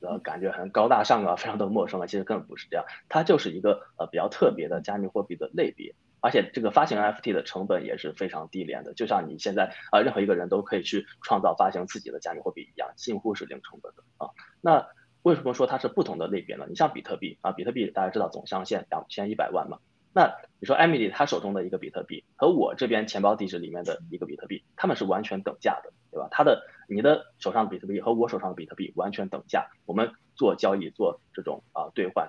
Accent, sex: native, male